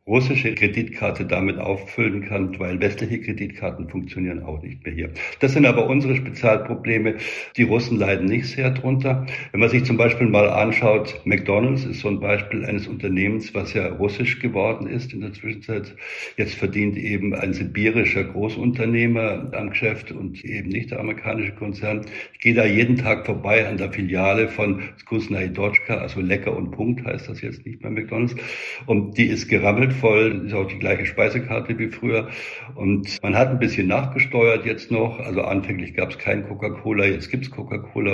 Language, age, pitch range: German, 60-79, 100-120 Hz